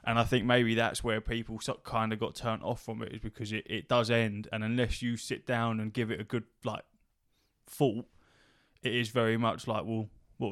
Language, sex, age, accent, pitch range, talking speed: English, male, 20-39, British, 110-125 Hz, 235 wpm